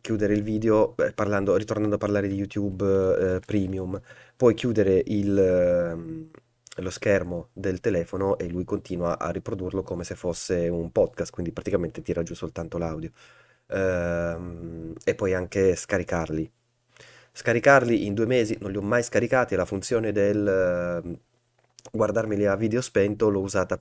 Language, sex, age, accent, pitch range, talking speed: Italian, male, 20-39, native, 90-110 Hz, 150 wpm